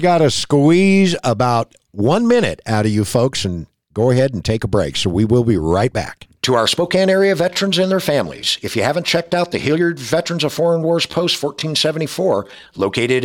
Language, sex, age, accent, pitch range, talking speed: English, male, 60-79, American, 115-170 Hz, 200 wpm